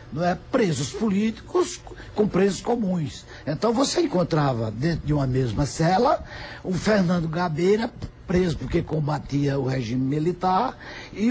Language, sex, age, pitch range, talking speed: Portuguese, male, 60-79, 135-205 Hz, 120 wpm